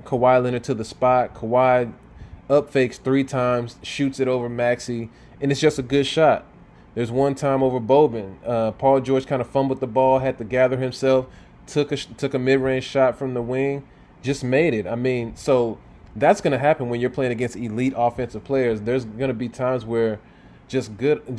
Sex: male